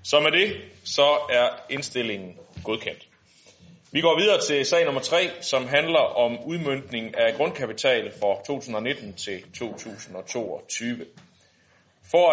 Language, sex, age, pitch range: Danish, male, 30-49, 115-170 Hz